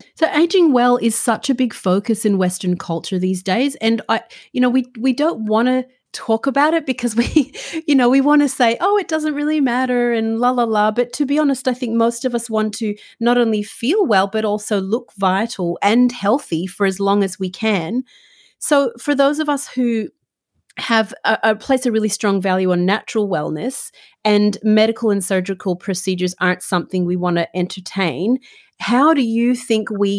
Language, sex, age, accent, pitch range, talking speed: English, female, 30-49, Australian, 180-245 Hz, 205 wpm